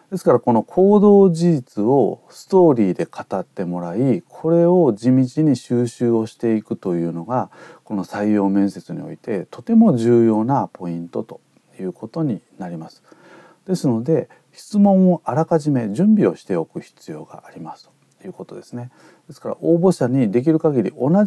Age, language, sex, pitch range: 40-59, Japanese, male, 100-170 Hz